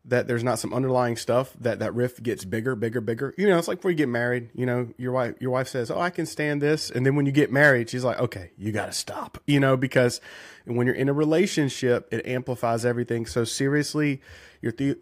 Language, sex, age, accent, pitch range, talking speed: English, male, 30-49, American, 115-135 Hz, 245 wpm